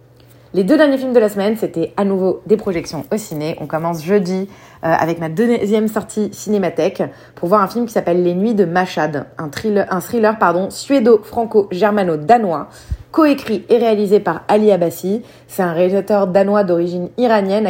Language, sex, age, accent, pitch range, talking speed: French, female, 30-49, French, 165-210 Hz, 175 wpm